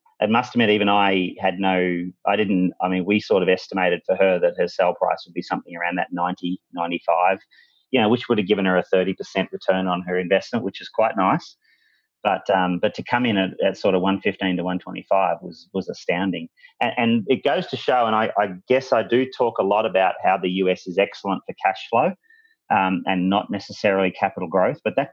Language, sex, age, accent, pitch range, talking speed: English, male, 30-49, Australian, 90-110 Hz, 225 wpm